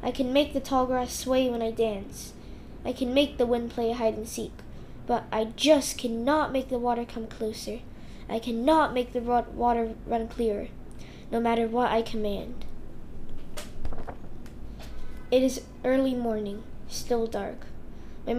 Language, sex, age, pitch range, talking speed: English, female, 10-29, 225-270 Hz, 145 wpm